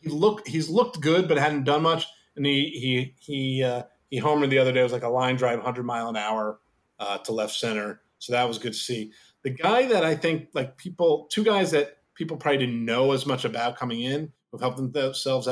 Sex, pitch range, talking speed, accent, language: male, 115-140 Hz, 235 wpm, American, English